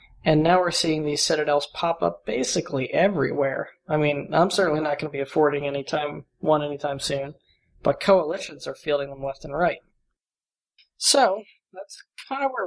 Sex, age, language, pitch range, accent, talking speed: male, 20-39, English, 145-165 Hz, American, 165 wpm